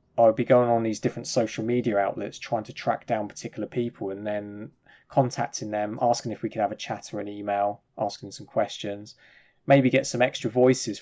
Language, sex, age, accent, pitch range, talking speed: English, male, 20-39, British, 105-125 Hz, 205 wpm